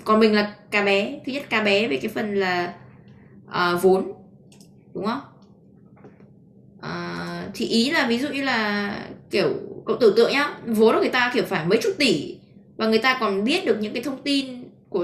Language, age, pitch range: Vietnamese, 20-39, 195-260 Hz